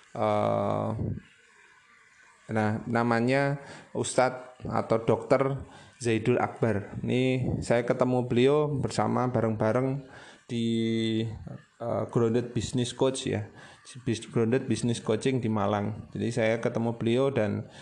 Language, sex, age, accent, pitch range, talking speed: Indonesian, male, 20-39, native, 110-130 Hz, 95 wpm